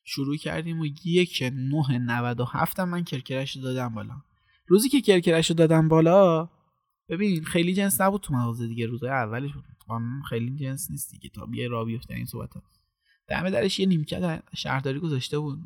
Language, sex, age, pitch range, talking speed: Persian, male, 20-39, 125-175 Hz, 155 wpm